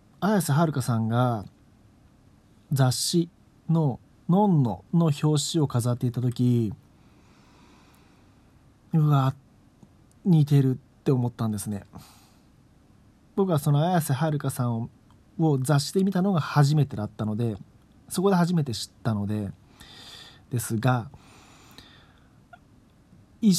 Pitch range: 110-150 Hz